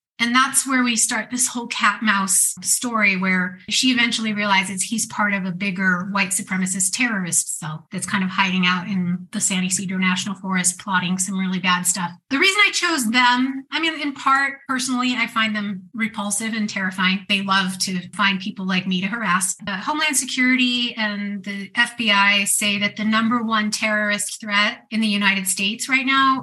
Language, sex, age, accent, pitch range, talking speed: English, female, 30-49, American, 195-240 Hz, 185 wpm